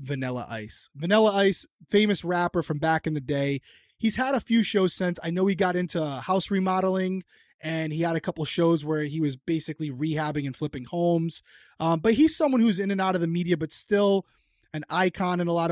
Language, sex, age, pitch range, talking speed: English, male, 20-39, 155-190 Hz, 215 wpm